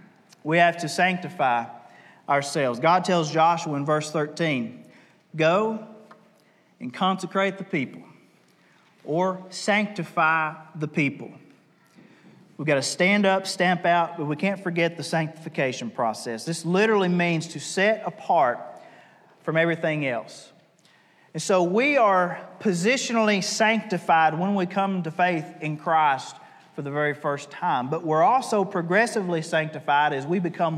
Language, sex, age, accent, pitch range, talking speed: English, male, 40-59, American, 155-200 Hz, 135 wpm